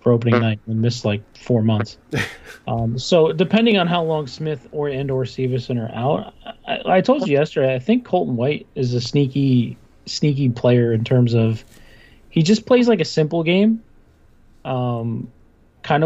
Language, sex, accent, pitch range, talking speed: English, male, American, 120-160 Hz, 170 wpm